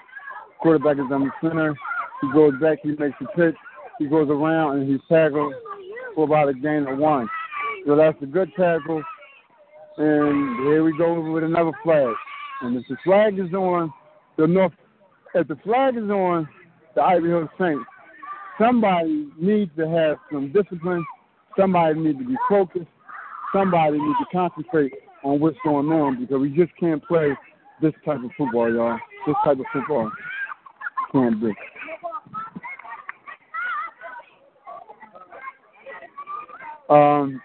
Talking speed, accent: 140 wpm, American